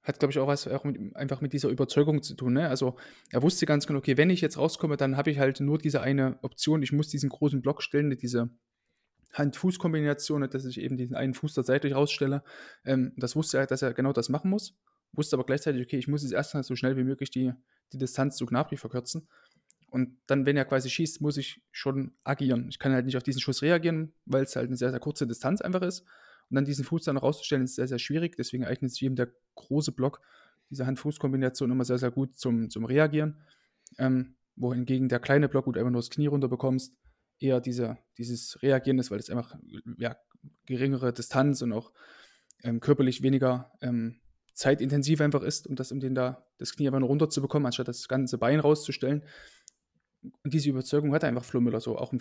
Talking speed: 220 wpm